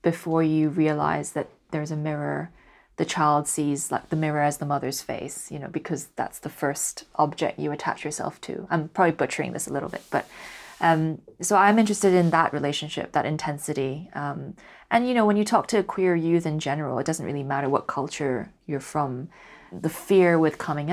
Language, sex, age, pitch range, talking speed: English, female, 20-39, 145-170 Hz, 200 wpm